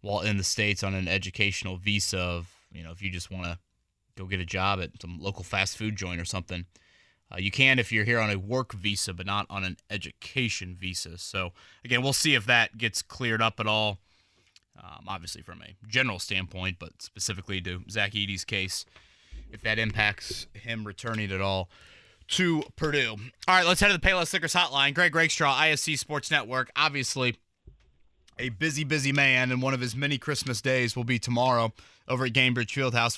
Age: 20-39